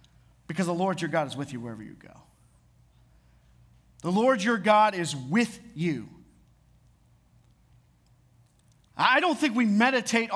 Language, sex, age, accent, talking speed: English, male, 40-59, American, 135 wpm